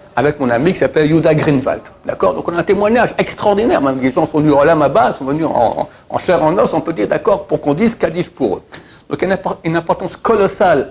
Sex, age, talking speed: male, 60-79, 255 wpm